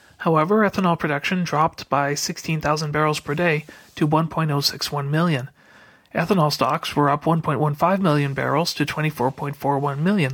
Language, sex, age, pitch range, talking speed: English, male, 40-59, 145-175 Hz, 130 wpm